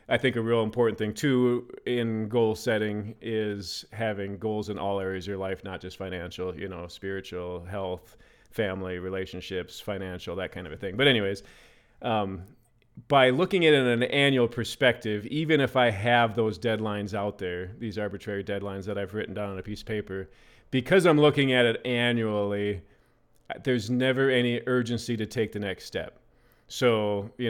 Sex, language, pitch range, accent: male, English, 100-125 Hz, American